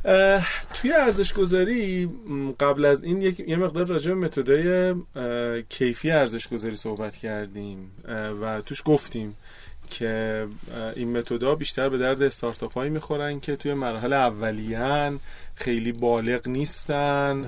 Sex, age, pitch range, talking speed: male, 30-49, 115-150 Hz, 115 wpm